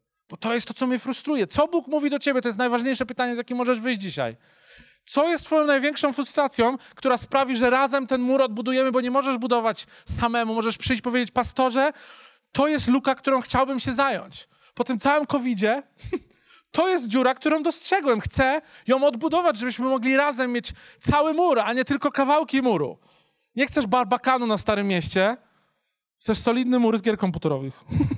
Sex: male